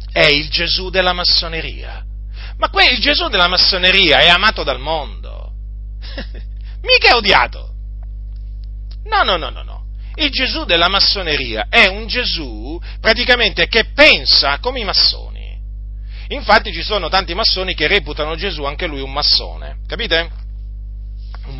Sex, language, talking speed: male, Italian, 140 wpm